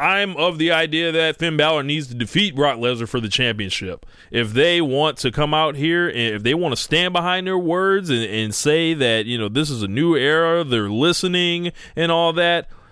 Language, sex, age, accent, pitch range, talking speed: English, male, 20-39, American, 120-175 Hz, 220 wpm